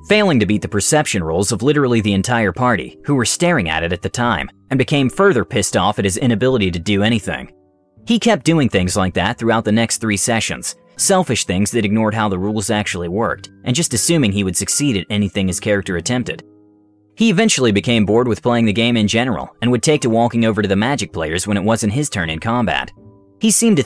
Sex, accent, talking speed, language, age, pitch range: male, American, 230 wpm, English, 30-49, 100-125 Hz